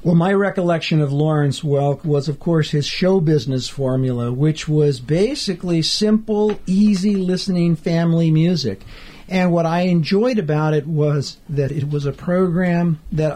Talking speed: 150 wpm